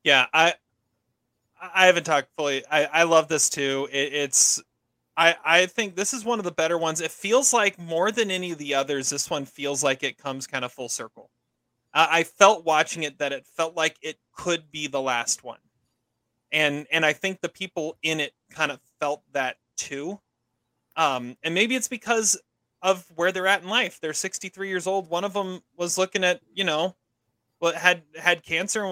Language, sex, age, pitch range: English, male, 30-49, 135-185 Hz